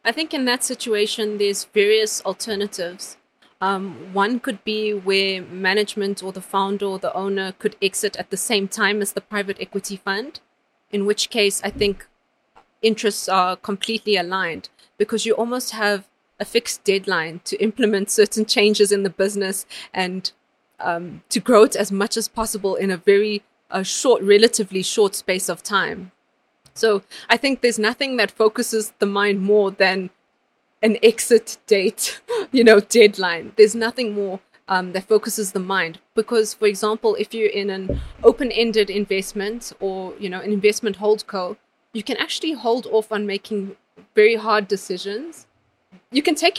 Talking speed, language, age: 165 wpm, English, 30-49